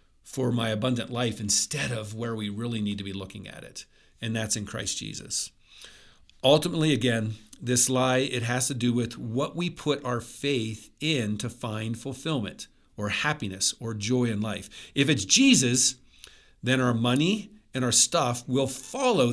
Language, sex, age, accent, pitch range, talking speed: English, male, 50-69, American, 115-145 Hz, 170 wpm